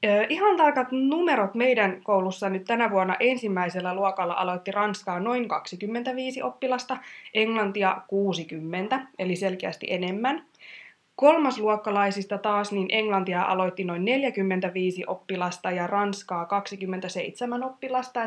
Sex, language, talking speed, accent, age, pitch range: female, Finnish, 105 wpm, native, 20-39, 190-240 Hz